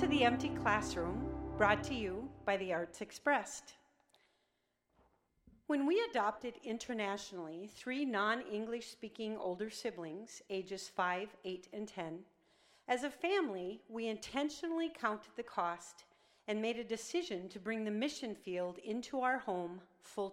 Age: 40-59